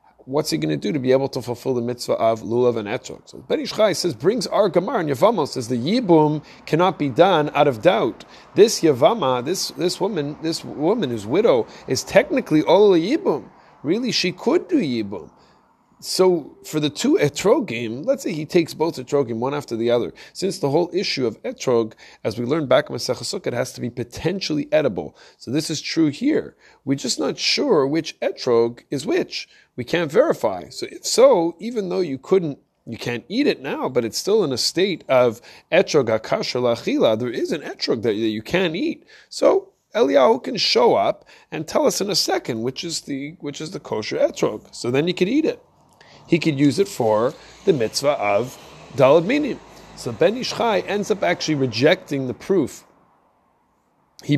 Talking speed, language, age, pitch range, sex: 195 wpm, English, 30-49, 125-185 Hz, male